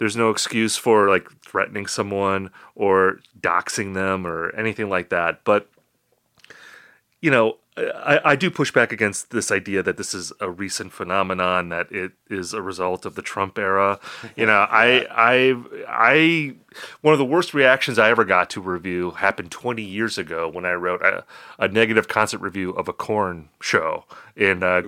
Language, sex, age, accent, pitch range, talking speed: English, male, 30-49, American, 100-130 Hz, 180 wpm